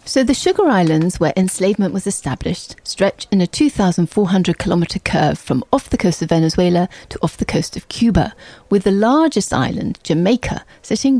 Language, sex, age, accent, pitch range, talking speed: English, female, 40-59, British, 170-245 Hz, 170 wpm